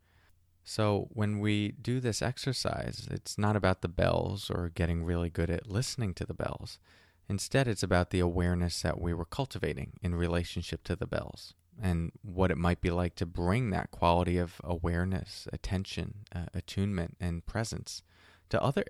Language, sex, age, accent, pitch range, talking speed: English, male, 20-39, American, 85-105 Hz, 170 wpm